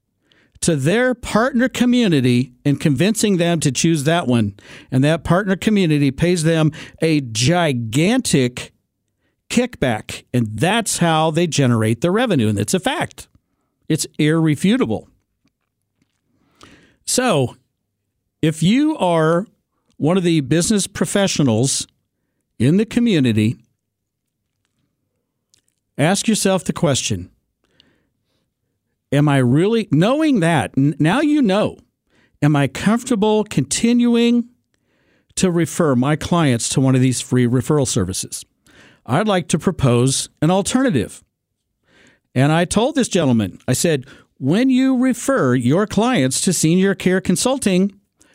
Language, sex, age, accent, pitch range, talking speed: English, male, 50-69, American, 125-195 Hz, 115 wpm